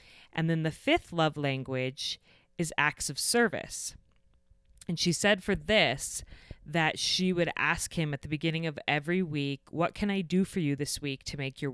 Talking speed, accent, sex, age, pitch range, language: 190 wpm, American, female, 30-49, 135-170 Hz, English